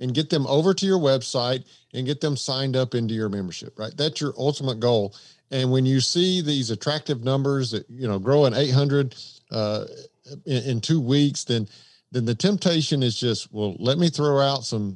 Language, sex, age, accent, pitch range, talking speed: English, male, 50-69, American, 120-150 Hz, 200 wpm